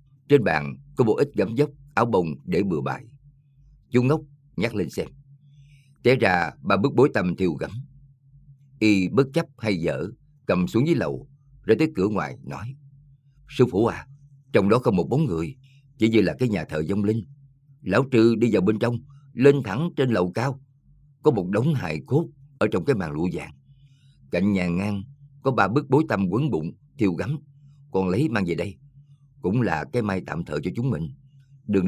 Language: Vietnamese